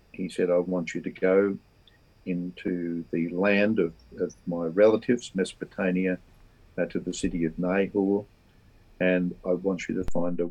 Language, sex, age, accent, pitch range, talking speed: English, male, 50-69, Australian, 90-100 Hz, 160 wpm